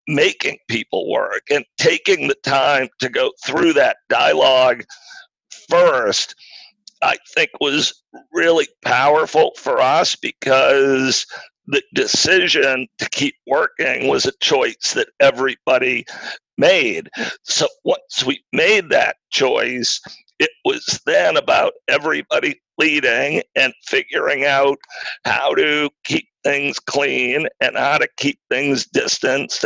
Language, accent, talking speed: English, American, 115 wpm